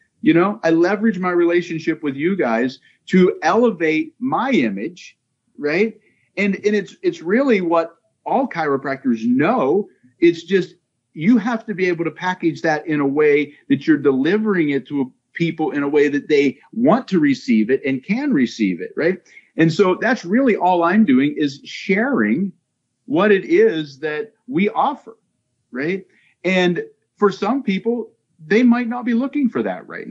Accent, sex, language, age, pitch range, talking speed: American, male, English, 50-69, 160-225 Hz, 165 wpm